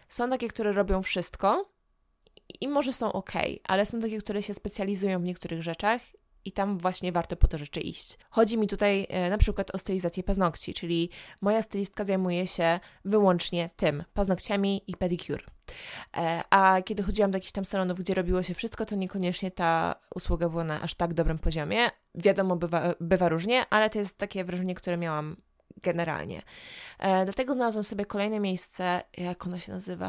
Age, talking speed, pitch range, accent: 20-39, 175 wpm, 175-205 Hz, native